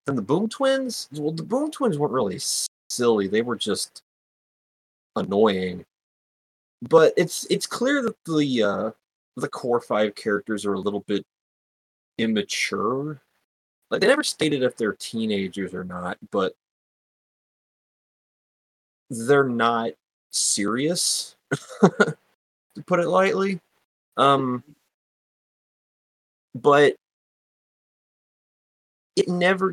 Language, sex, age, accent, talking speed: English, male, 30-49, American, 105 wpm